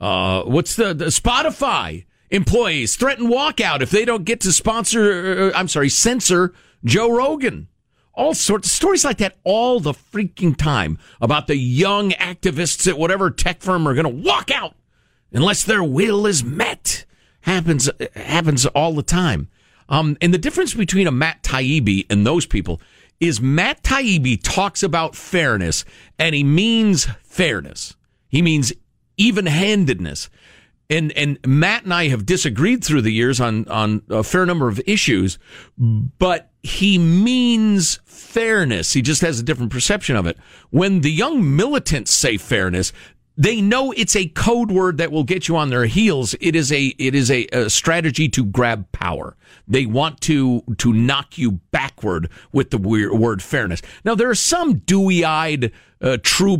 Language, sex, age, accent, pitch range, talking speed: English, male, 50-69, American, 120-185 Hz, 165 wpm